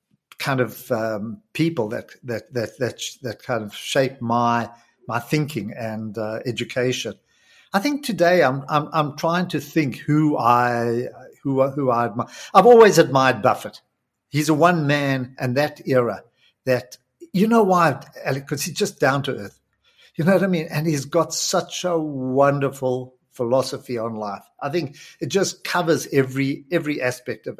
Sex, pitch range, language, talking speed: male, 120-165 Hz, English, 165 wpm